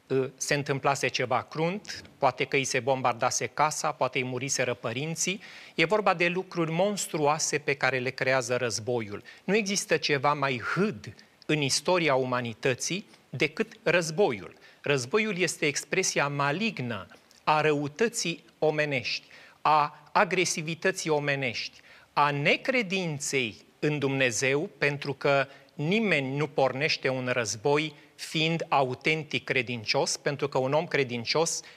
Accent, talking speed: native, 120 wpm